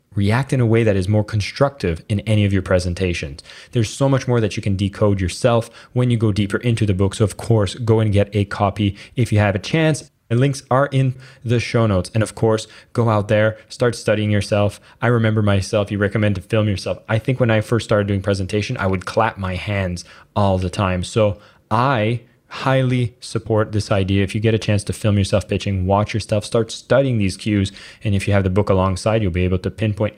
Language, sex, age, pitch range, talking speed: English, male, 20-39, 100-120 Hz, 230 wpm